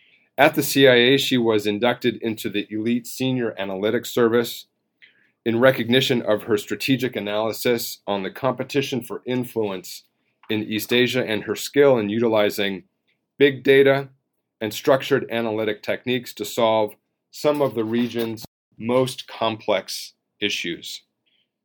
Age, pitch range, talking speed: 40-59, 105-130 Hz, 130 wpm